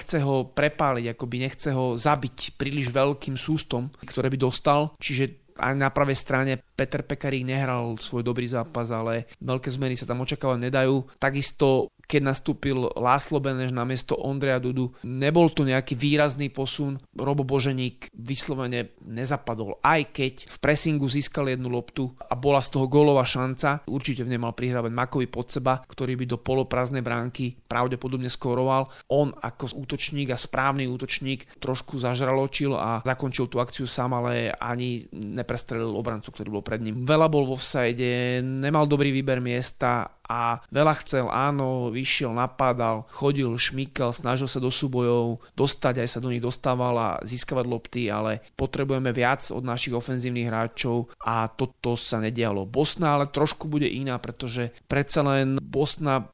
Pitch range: 120-140 Hz